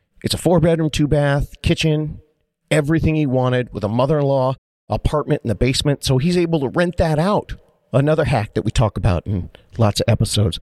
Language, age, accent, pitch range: English, 40-59, American, 120-170 Hz